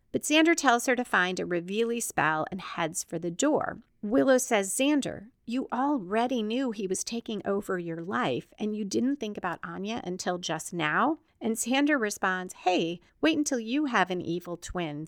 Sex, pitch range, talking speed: female, 180-255 Hz, 185 wpm